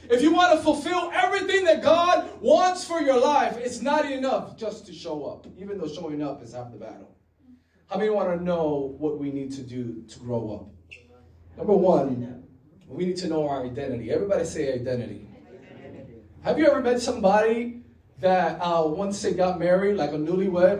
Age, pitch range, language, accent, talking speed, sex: 20-39, 150-225 Hz, English, American, 190 wpm, male